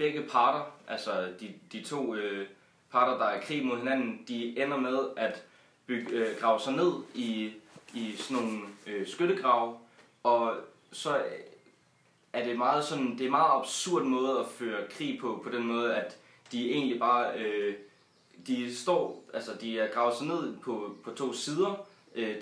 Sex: male